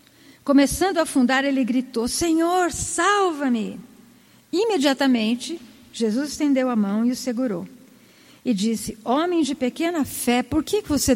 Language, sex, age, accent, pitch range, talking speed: Portuguese, female, 50-69, Brazilian, 225-270 Hz, 130 wpm